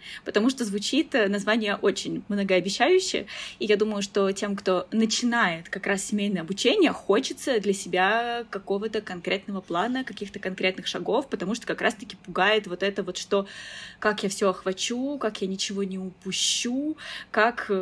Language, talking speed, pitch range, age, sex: Russian, 150 wpm, 190-230 Hz, 20-39, female